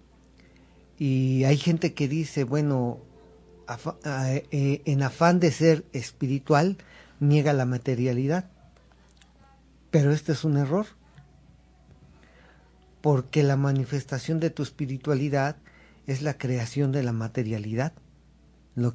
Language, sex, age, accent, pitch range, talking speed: Spanish, male, 40-59, Mexican, 125-155 Hz, 100 wpm